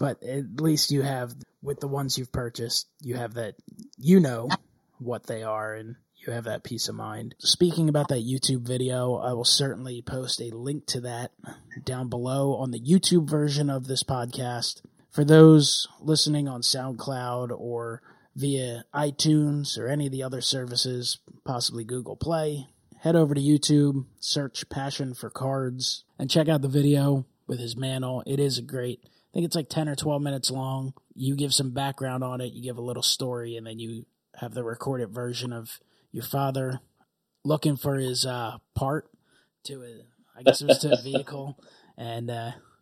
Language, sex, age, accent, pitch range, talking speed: English, male, 20-39, American, 120-140 Hz, 180 wpm